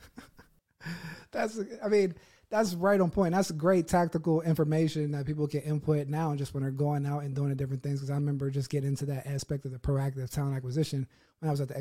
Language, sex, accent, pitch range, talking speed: English, male, American, 140-160 Hz, 230 wpm